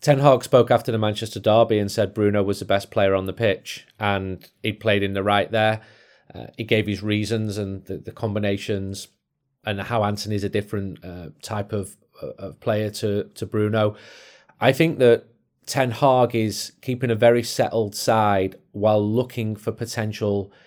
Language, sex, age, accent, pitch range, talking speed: English, male, 30-49, British, 100-115 Hz, 175 wpm